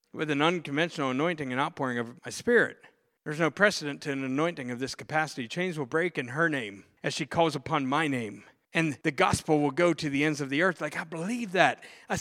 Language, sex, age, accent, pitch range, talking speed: English, male, 40-59, American, 155-220 Hz, 225 wpm